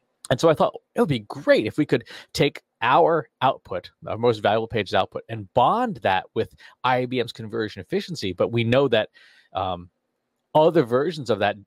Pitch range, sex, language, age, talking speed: 110-150 Hz, male, English, 30-49, 175 wpm